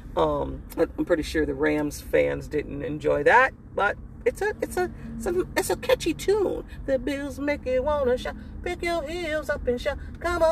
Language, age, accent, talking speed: English, 40-59, American, 195 wpm